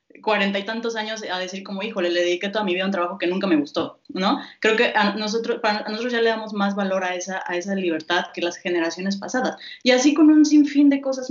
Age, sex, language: 20-39, female, Spanish